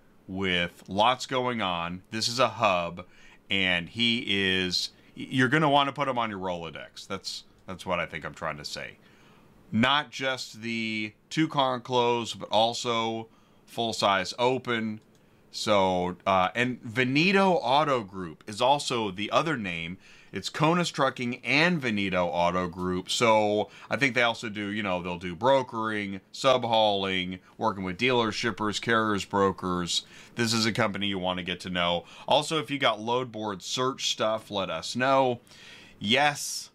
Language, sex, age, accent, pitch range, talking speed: English, male, 30-49, American, 95-130 Hz, 160 wpm